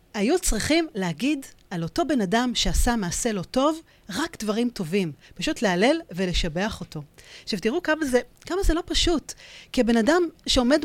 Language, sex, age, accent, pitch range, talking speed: Hebrew, female, 40-59, native, 190-260 Hz, 165 wpm